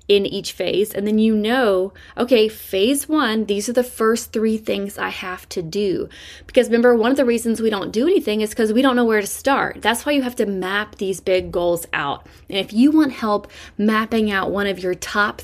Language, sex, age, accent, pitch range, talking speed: English, female, 20-39, American, 185-230 Hz, 230 wpm